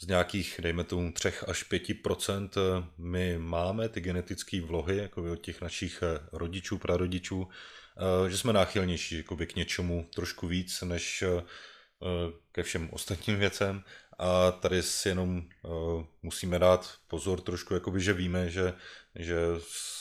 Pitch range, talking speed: 85-90 Hz, 130 wpm